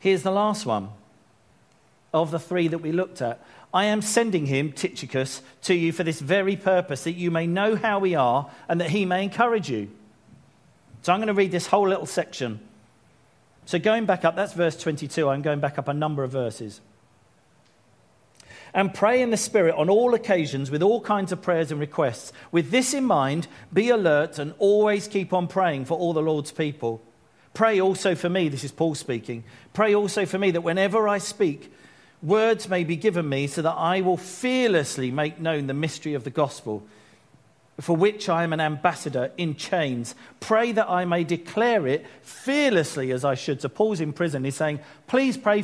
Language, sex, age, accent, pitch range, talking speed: English, male, 40-59, British, 145-200 Hz, 195 wpm